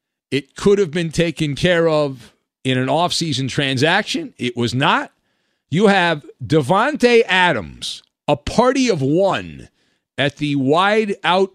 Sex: male